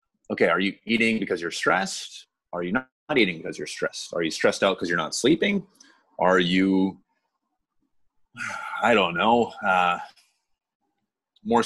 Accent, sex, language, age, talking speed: American, male, English, 30-49, 150 wpm